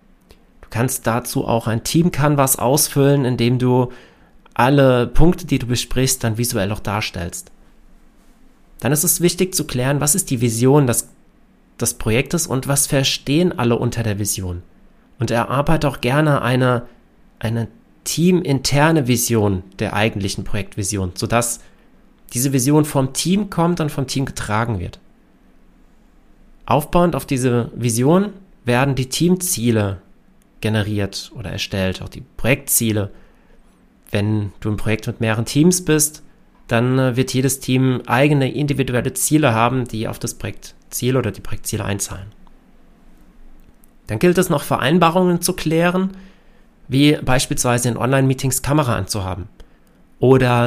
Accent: German